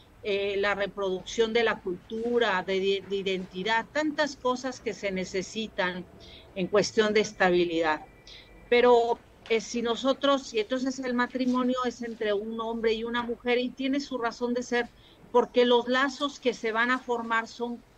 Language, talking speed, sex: Spanish, 160 wpm, female